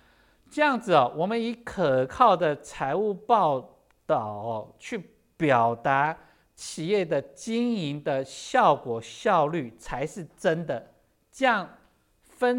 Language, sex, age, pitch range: Chinese, male, 50-69, 130-210 Hz